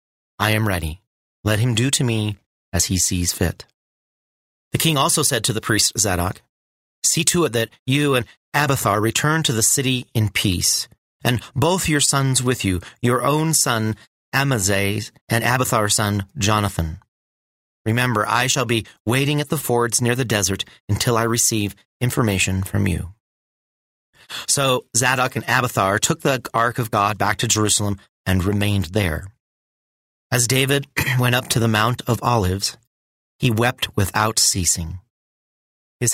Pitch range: 105-130 Hz